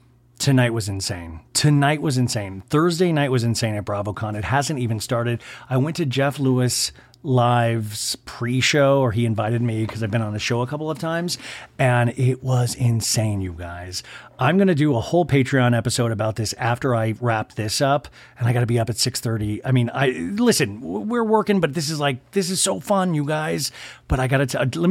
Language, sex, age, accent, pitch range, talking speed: English, male, 40-59, American, 115-140 Hz, 205 wpm